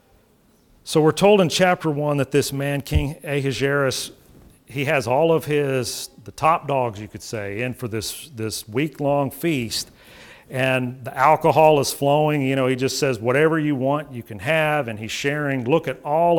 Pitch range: 125-150 Hz